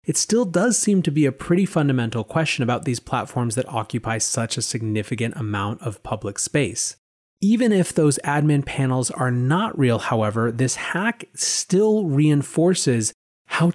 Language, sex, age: English, male, 30-49